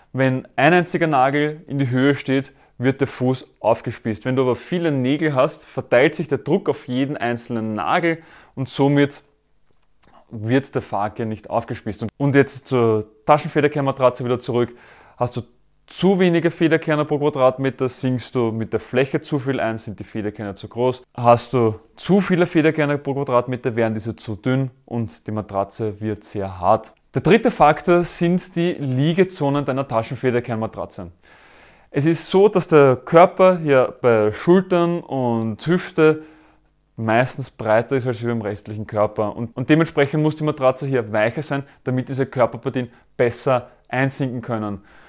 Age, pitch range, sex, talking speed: 20-39, 115-150 Hz, male, 155 wpm